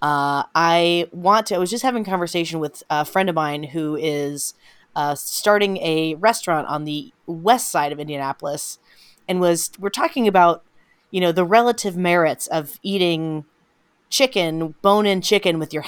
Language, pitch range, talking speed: English, 155-210 Hz, 170 wpm